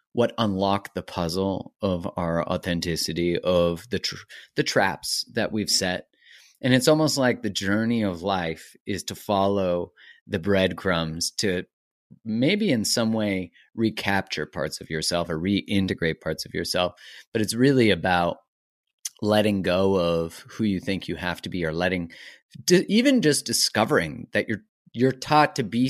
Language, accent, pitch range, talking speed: English, American, 90-115 Hz, 160 wpm